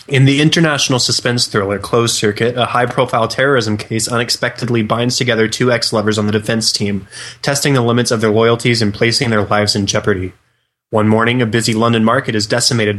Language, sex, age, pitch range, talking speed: English, male, 20-39, 110-125 Hz, 185 wpm